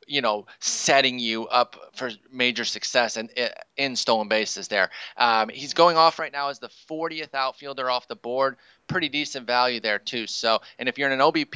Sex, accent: male, American